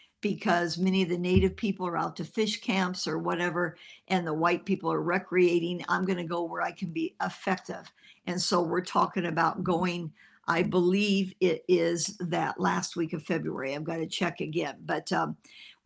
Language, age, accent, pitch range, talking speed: English, 50-69, American, 175-200 Hz, 190 wpm